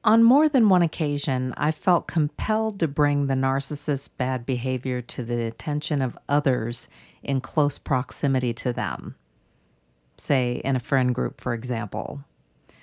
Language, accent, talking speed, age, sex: English, American, 145 wpm, 50-69, female